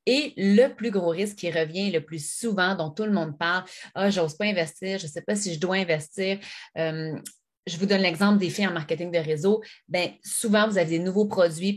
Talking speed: 240 wpm